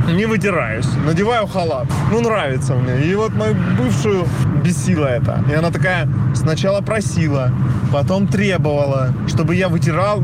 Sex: male